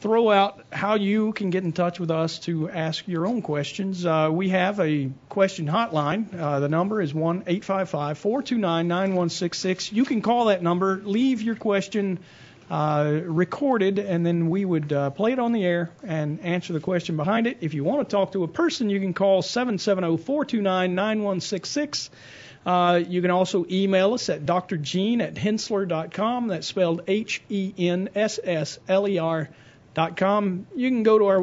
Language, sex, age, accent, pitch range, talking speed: English, male, 40-59, American, 165-210 Hz, 180 wpm